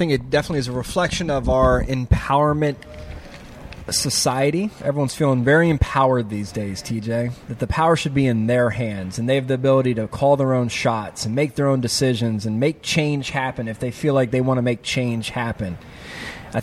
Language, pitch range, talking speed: English, 125-150 Hz, 200 wpm